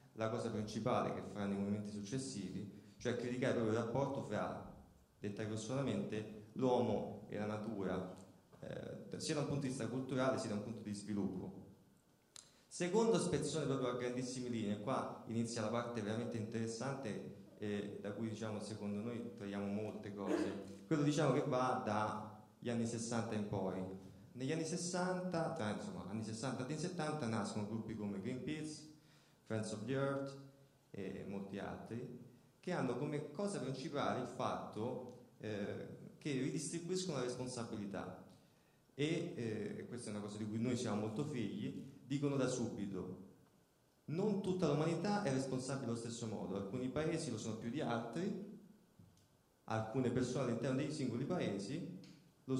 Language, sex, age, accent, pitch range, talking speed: Italian, male, 30-49, native, 105-135 Hz, 150 wpm